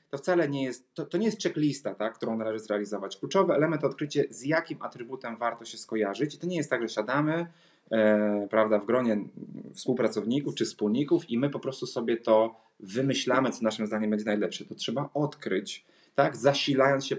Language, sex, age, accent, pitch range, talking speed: Polish, male, 30-49, native, 110-155 Hz, 190 wpm